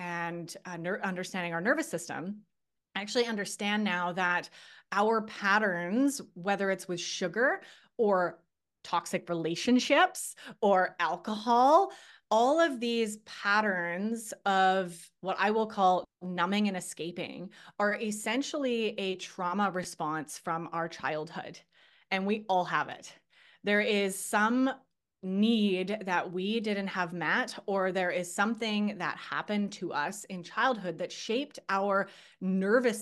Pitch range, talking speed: 180-215 Hz, 125 wpm